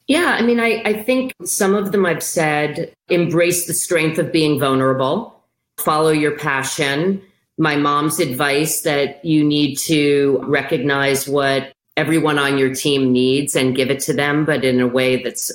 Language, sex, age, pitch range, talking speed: English, female, 40-59, 140-190 Hz, 170 wpm